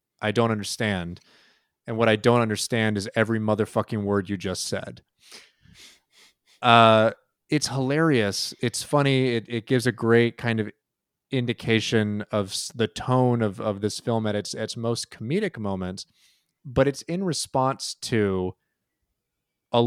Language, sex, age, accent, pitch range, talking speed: English, male, 30-49, American, 105-120 Hz, 140 wpm